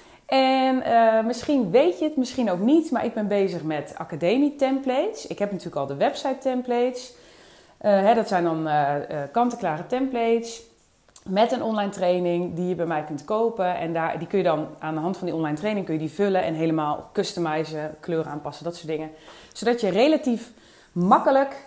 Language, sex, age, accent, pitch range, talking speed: English, female, 30-49, Dutch, 170-245 Hz, 195 wpm